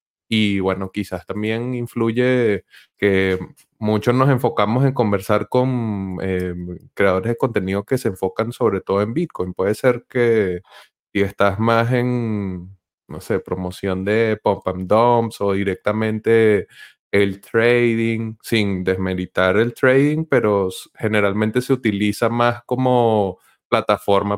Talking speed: 130 wpm